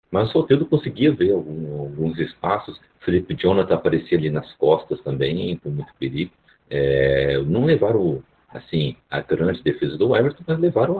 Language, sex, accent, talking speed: Portuguese, male, Brazilian, 160 wpm